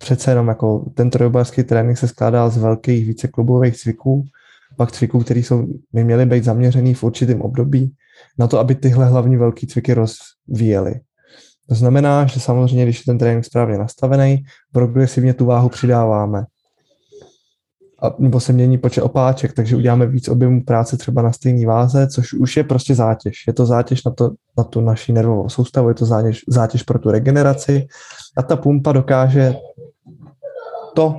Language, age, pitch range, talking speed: Czech, 20-39, 120-140 Hz, 165 wpm